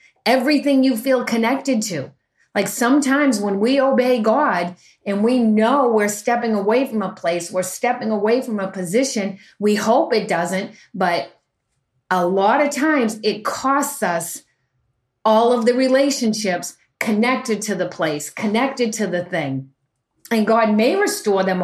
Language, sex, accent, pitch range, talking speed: English, female, American, 195-245 Hz, 155 wpm